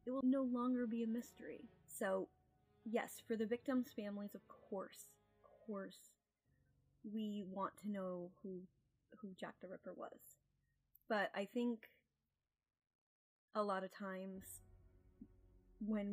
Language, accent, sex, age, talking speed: English, American, female, 10-29, 130 wpm